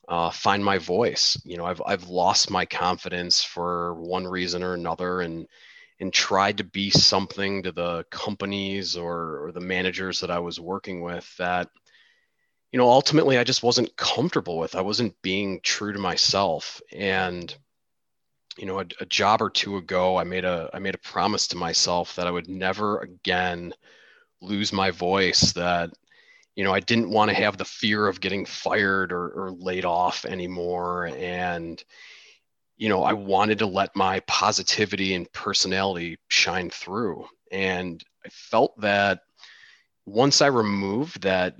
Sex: male